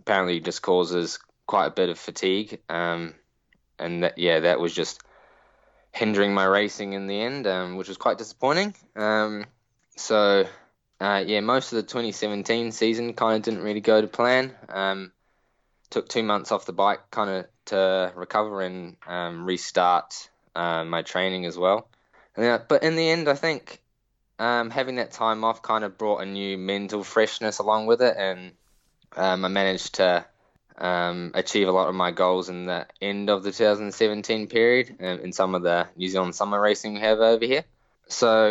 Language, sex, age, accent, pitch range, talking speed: English, male, 10-29, Australian, 95-115 Hz, 180 wpm